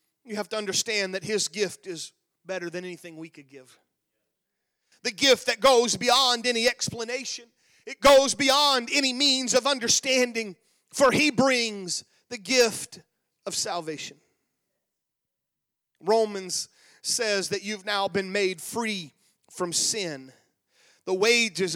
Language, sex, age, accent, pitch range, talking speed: English, male, 40-59, American, 195-260 Hz, 130 wpm